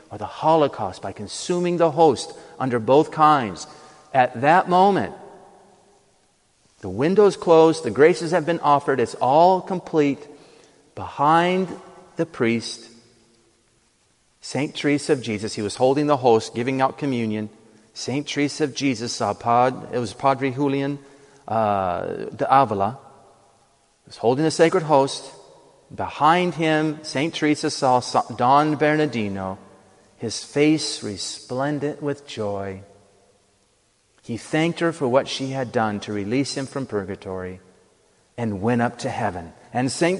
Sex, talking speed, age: male, 130 wpm, 40-59